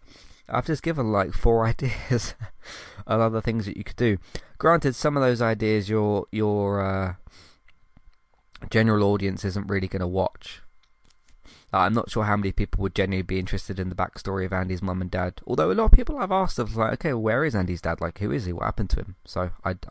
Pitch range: 95-135 Hz